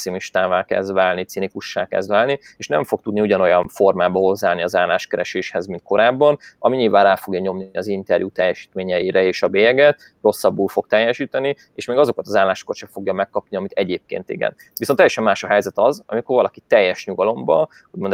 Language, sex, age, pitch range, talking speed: Hungarian, male, 30-49, 95-115 Hz, 170 wpm